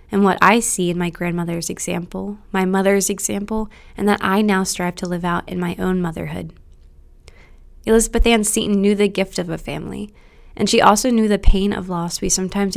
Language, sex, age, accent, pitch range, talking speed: English, female, 20-39, American, 175-200 Hz, 195 wpm